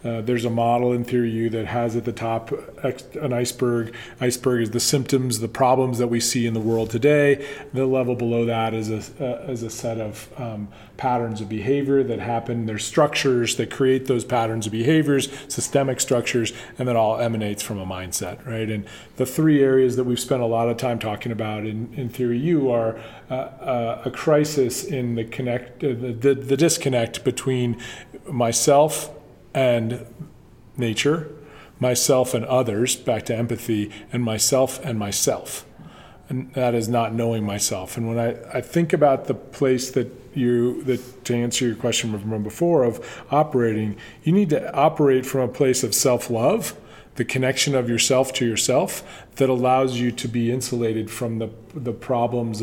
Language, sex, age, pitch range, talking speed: English, male, 40-59, 115-130 Hz, 175 wpm